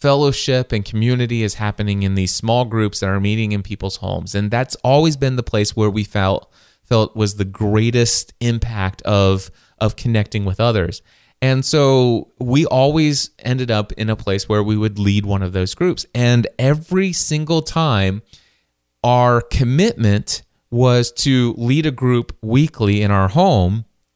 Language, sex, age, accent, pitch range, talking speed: English, male, 30-49, American, 105-130 Hz, 165 wpm